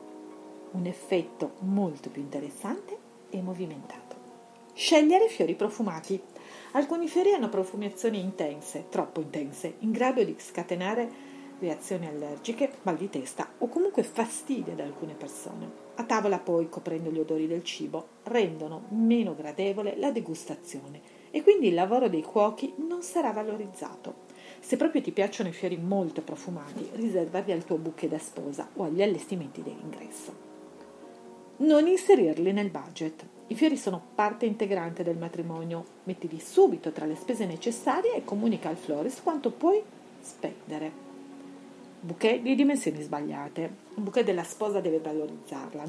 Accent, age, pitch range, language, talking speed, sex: native, 40-59, 160-235 Hz, Italian, 140 wpm, female